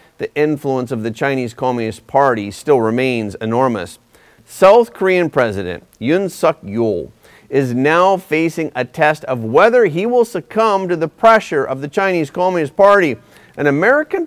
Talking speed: 145 wpm